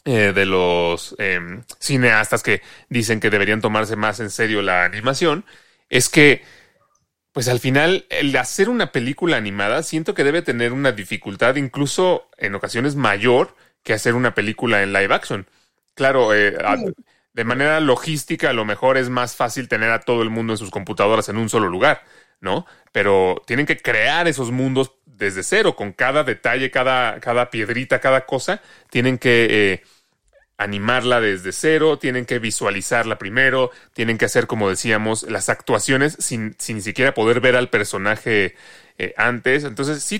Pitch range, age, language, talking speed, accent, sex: 110-135 Hz, 30-49, Spanish, 165 wpm, Mexican, male